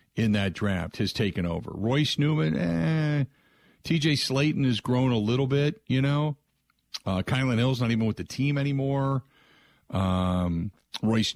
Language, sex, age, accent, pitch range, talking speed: English, male, 50-69, American, 95-125 Hz, 155 wpm